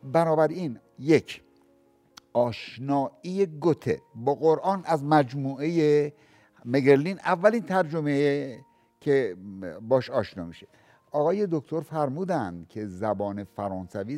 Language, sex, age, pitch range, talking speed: Persian, male, 60-79, 120-160 Hz, 95 wpm